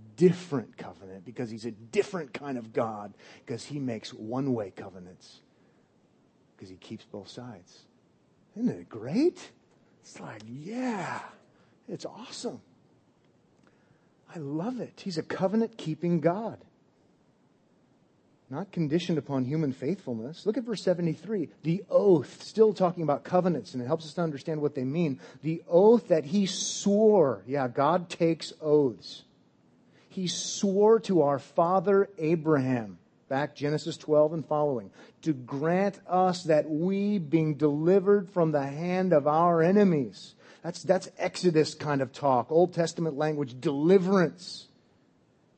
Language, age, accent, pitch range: English, 40-59, American, 135-180 Hz